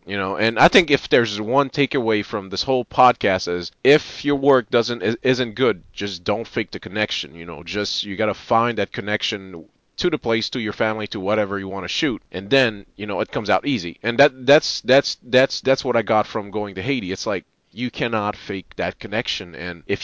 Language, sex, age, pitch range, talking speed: English, male, 30-49, 95-120 Hz, 220 wpm